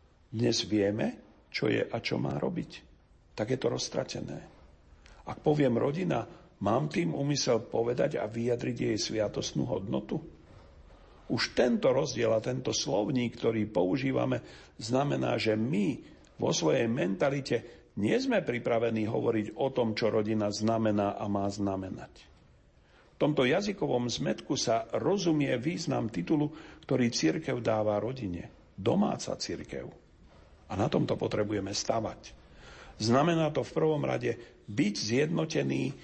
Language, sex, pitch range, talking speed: Slovak, male, 105-135 Hz, 125 wpm